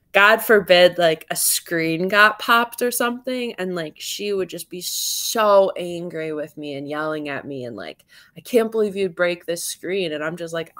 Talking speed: 200 wpm